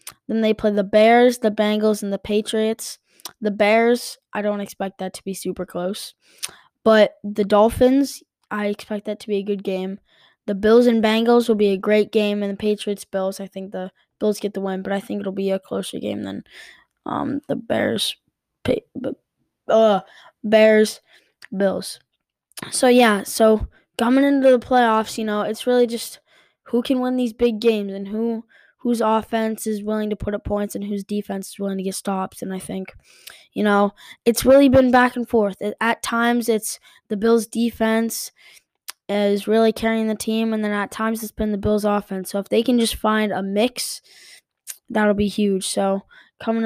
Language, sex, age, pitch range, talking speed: English, female, 10-29, 200-230 Hz, 185 wpm